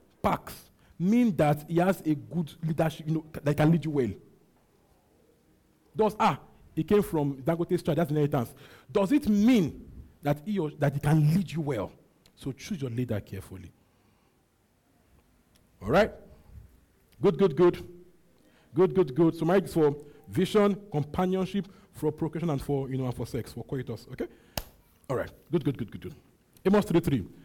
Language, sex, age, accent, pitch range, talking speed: English, male, 50-69, Nigerian, 135-185 Hz, 160 wpm